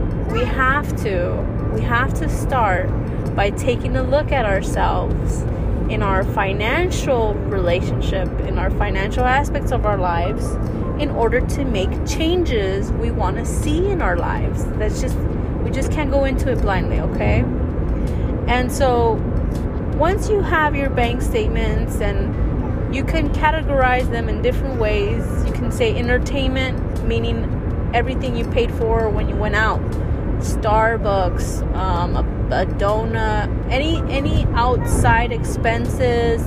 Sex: female